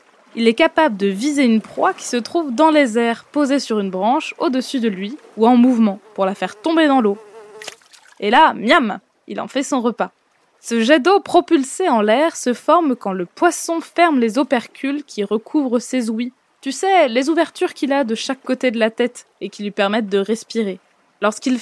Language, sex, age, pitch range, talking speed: French, female, 20-39, 215-300 Hz, 205 wpm